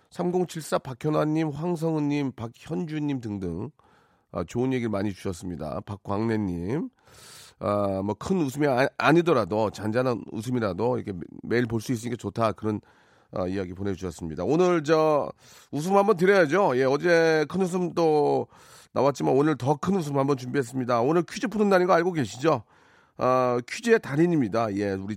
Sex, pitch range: male, 115-180 Hz